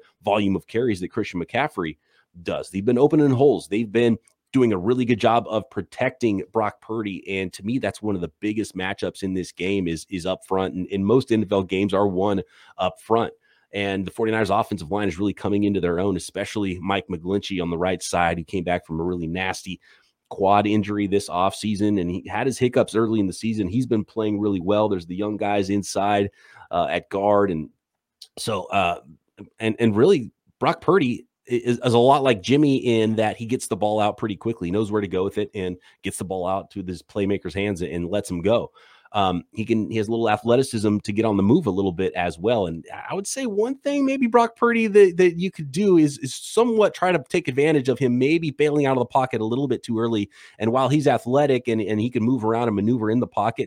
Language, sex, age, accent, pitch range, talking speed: English, male, 30-49, American, 95-120 Hz, 235 wpm